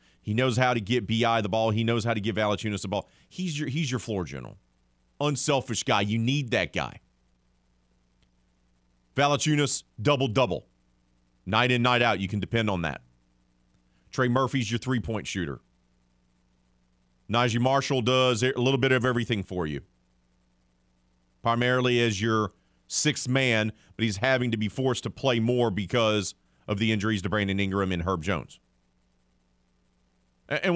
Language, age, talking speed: English, 40-59, 150 wpm